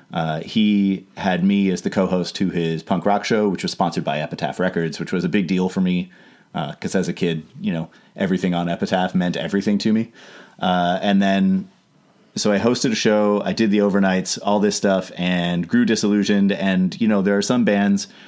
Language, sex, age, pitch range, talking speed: English, male, 30-49, 90-110 Hz, 210 wpm